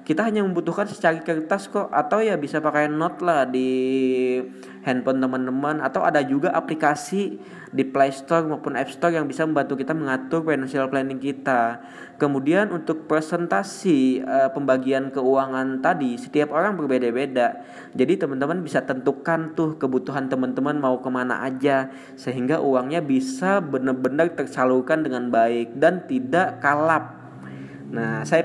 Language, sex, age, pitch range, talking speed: English, male, 20-39, 130-155 Hz, 135 wpm